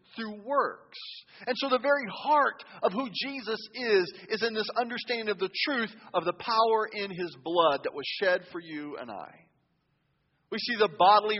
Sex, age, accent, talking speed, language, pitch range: male, 40-59, American, 185 wpm, English, 170-220 Hz